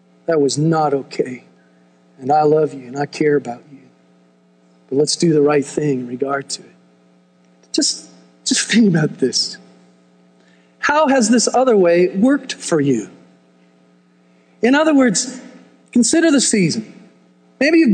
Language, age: English, 40-59